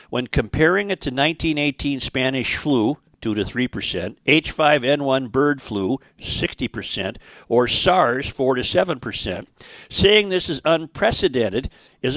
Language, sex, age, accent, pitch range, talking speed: English, male, 50-69, American, 125-150 Hz, 105 wpm